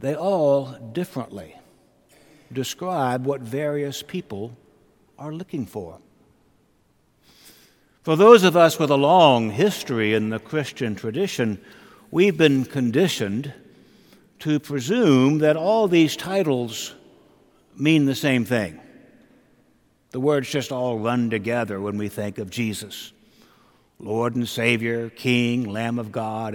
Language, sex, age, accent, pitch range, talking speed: English, male, 60-79, American, 110-155 Hz, 120 wpm